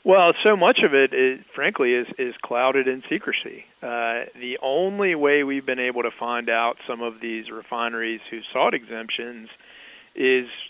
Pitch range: 120-130 Hz